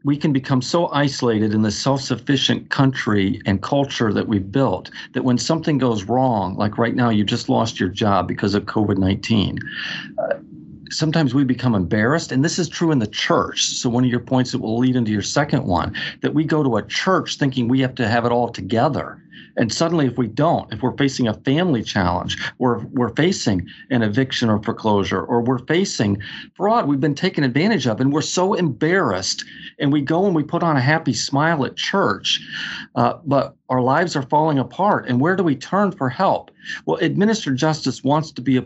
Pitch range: 115-155 Hz